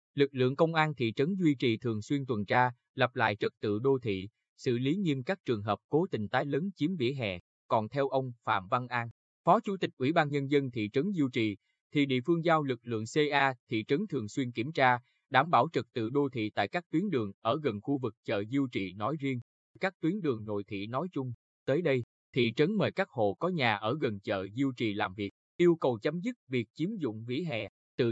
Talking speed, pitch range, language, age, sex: 240 wpm, 110-150 Hz, Vietnamese, 20-39, male